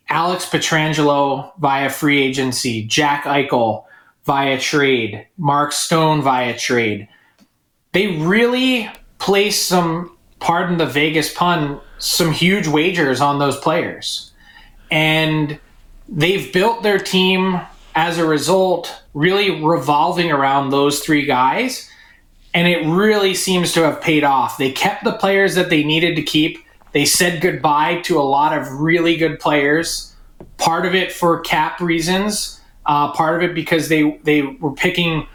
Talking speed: 140 wpm